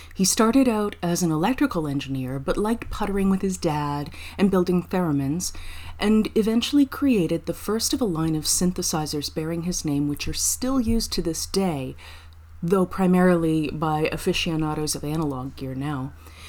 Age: 30-49